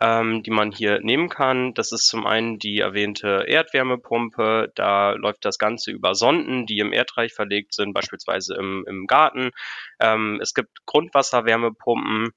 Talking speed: 145 wpm